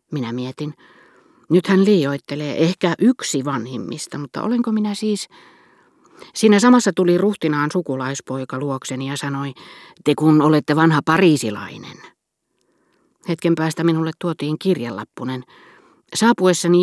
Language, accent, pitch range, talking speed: Finnish, native, 130-185 Hz, 110 wpm